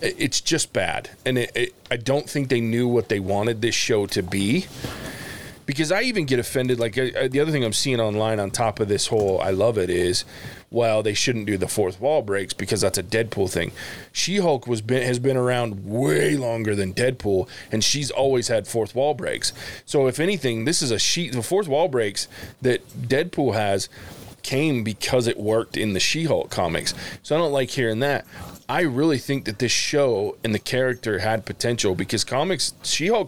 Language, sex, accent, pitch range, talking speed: English, male, American, 110-135 Hz, 205 wpm